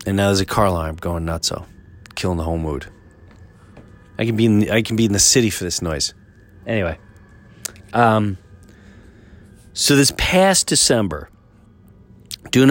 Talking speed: 160 wpm